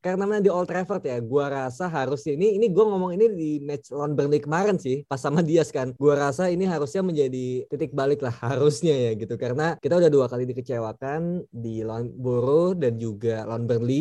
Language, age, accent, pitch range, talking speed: Indonesian, 20-39, native, 130-190 Hz, 195 wpm